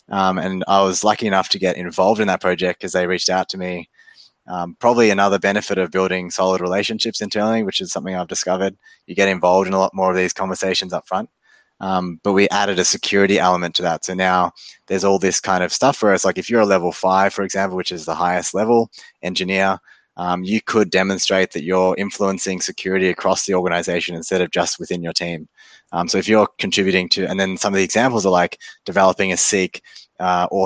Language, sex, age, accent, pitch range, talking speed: English, male, 20-39, Australian, 90-100 Hz, 215 wpm